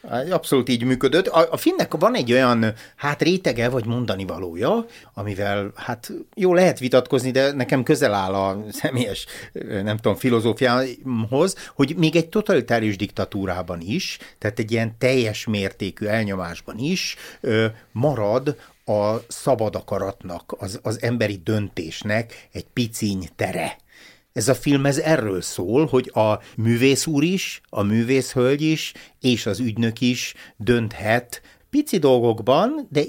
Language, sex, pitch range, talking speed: Hungarian, male, 110-145 Hz, 130 wpm